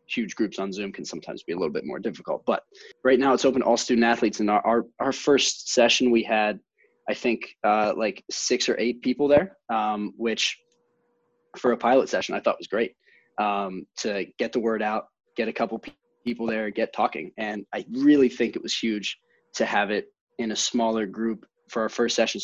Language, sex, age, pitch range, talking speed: English, male, 20-39, 105-125 Hz, 210 wpm